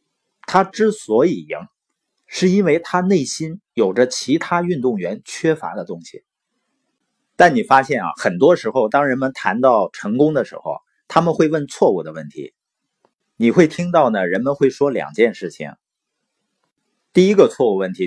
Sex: male